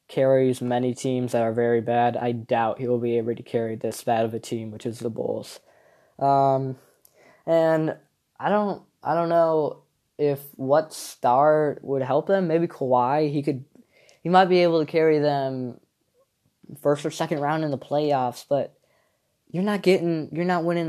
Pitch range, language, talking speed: 125-155 Hz, English, 180 wpm